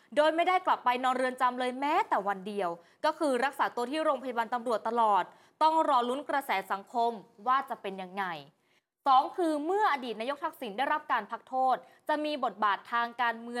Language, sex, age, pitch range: Thai, female, 20-39, 225-290 Hz